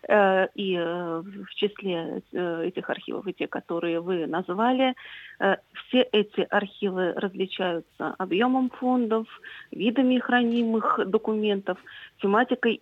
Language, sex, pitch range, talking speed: English, female, 185-230 Hz, 95 wpm